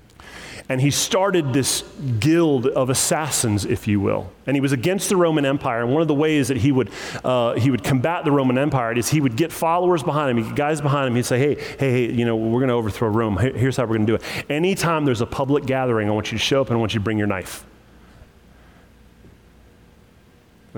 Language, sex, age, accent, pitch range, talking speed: English, male, 30-49, American, 115-150 Hz, 235 wpm